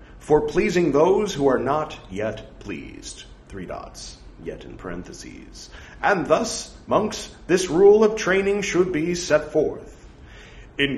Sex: male